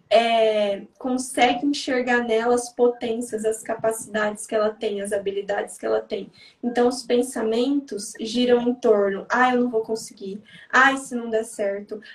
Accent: Brazilian